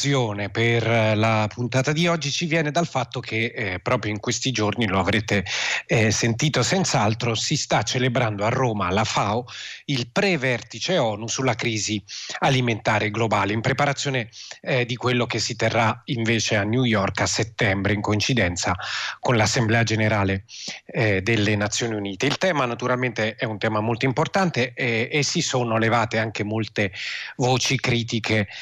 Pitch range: 110-130 Hz